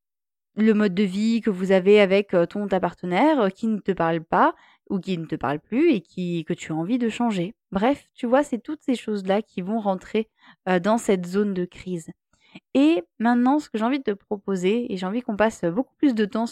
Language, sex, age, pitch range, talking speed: French, female, 20-39, 190-240 Hz, 230 wpm